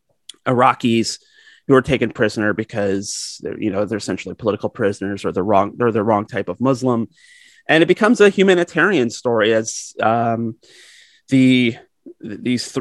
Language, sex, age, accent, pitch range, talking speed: English, male, 30-49, American, 110-145 Hz, 145 wpm